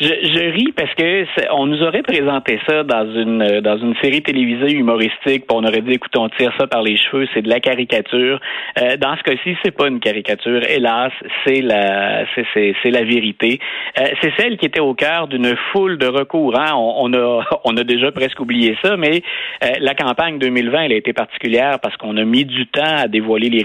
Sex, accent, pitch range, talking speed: male, Canadian, 115-150 Hz, 220 wpm